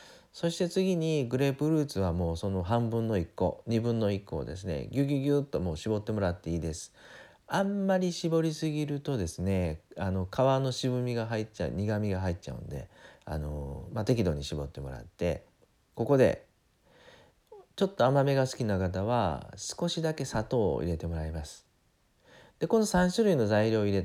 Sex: male